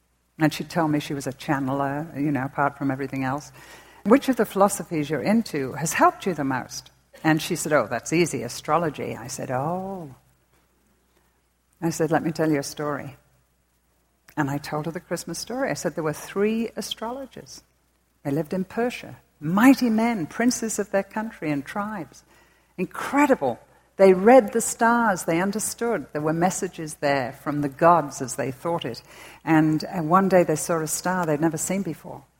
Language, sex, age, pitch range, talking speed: English, female, 60-79, 140-195 Hz, 180 wpm